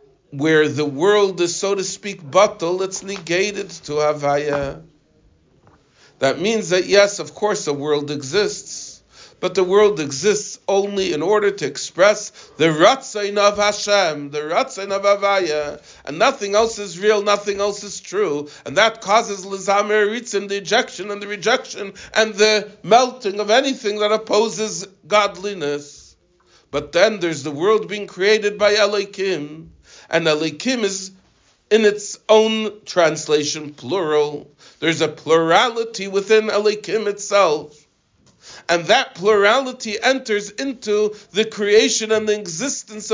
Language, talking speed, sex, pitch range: English, 135 wpm, male, 165-215 Hz